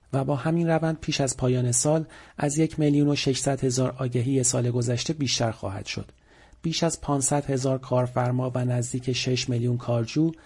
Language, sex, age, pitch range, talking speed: Persian, male, 40-59, 125-155 Hz, 170 wpm